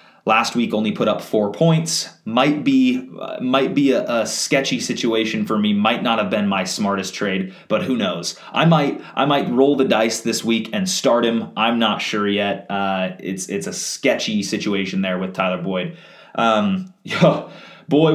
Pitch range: 100-165 Hz